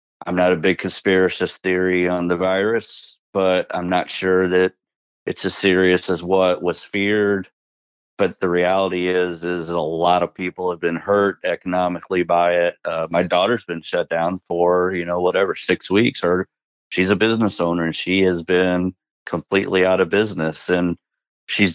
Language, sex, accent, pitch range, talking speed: English, male, American, 85-95 Hz, 175 wpm